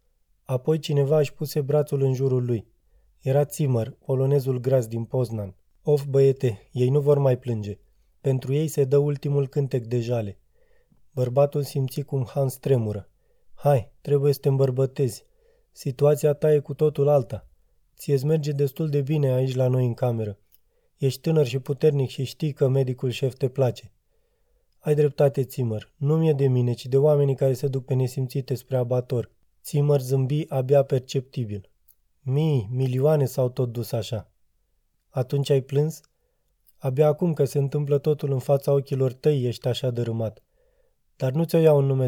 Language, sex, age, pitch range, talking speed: Romanian, male, 20-39, 125-145 Hz, 165 wpm